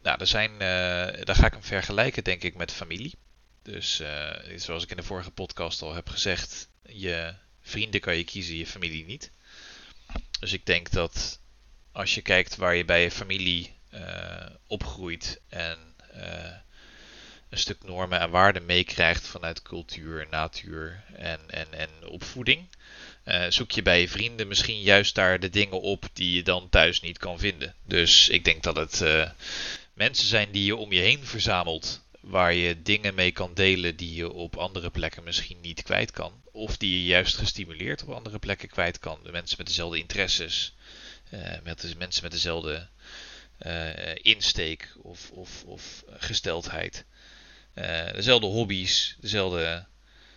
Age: 30-49